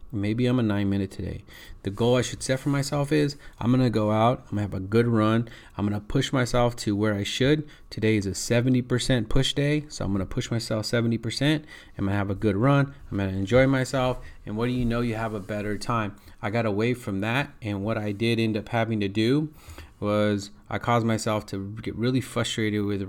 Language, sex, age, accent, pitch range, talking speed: English, male, 30-49, American, 100-125 Hz, 225 wpm